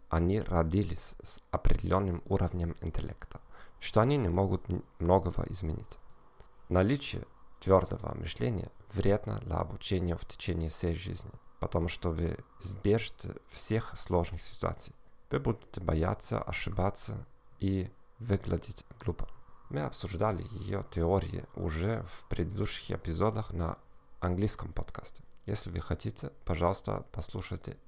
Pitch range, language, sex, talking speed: 85-110 Hz, Russian, male, 110 wpm